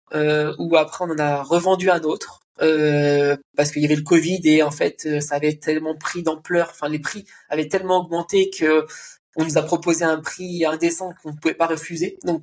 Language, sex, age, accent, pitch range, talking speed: French, male, 20-39, French, 150-185 Hz, 215 wpm